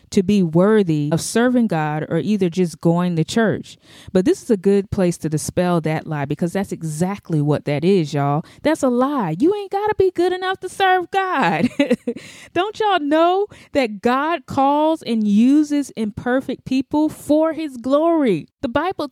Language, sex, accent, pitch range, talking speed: English, female, American, 180-285 Hz, 180 wpm